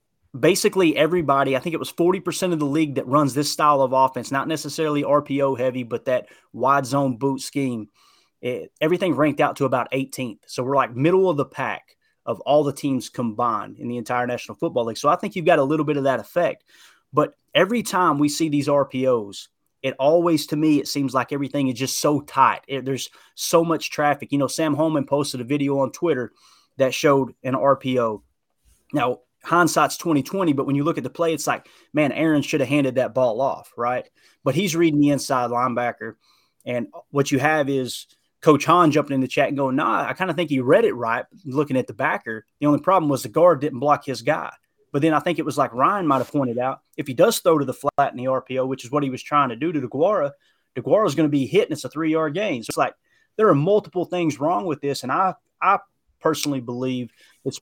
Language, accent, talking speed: English, American, 225 wpm